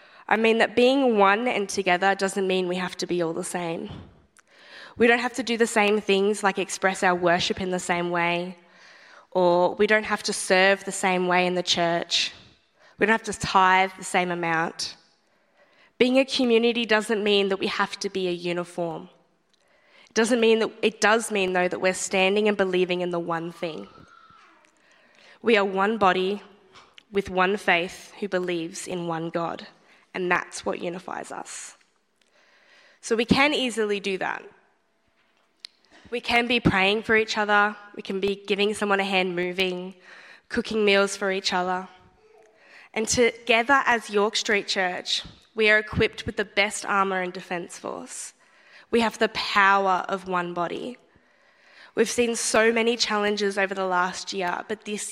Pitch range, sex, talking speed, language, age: 185-215 Hz, female, 170 wpm, English, 10-29